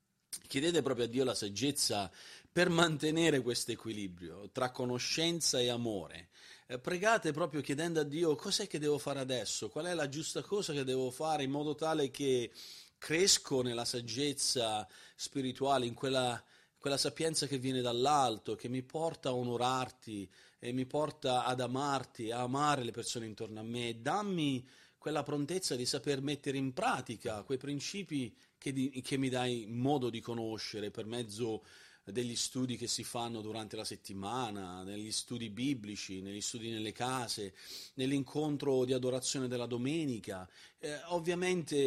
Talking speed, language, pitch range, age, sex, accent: 150 wpm, Italian, 120-145 Hz, 40-59, male, native